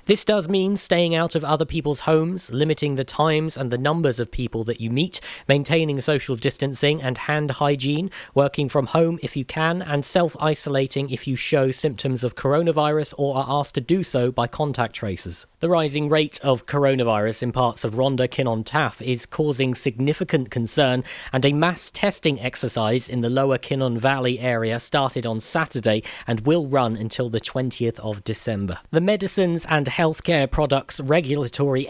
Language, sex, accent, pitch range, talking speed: English, male, British, 125-155 Hz, 175 wpm